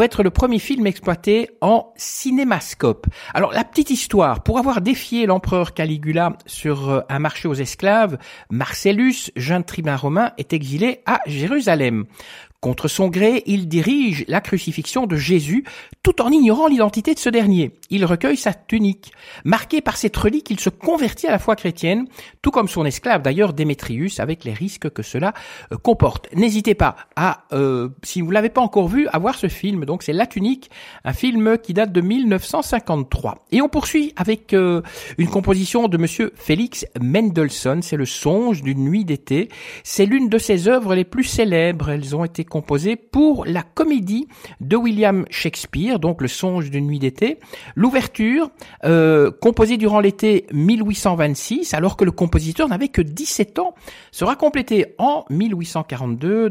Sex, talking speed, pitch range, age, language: male, 165 wpm, 160-235 Hz, 60-79, French